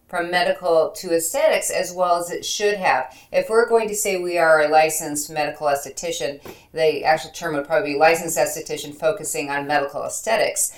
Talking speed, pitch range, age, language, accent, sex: 185 wpm, 155-205 Hz, 50-69, English, American, female